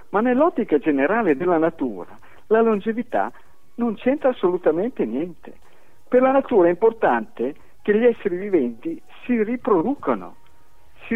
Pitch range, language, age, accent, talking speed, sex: 150-235 Hz, Italian, 50-69, native, 125 wpm, male